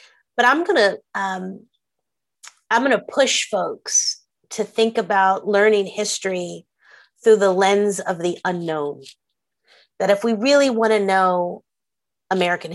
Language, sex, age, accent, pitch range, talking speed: English, female, 30-49, American, 185-230 Hz, 120 wpm